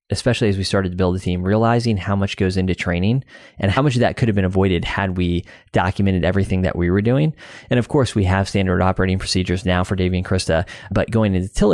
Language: English